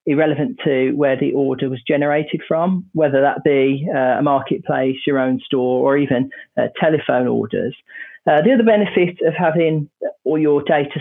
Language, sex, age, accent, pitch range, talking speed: English, male, 40-59, British, 140-175 Hz, 170 wpm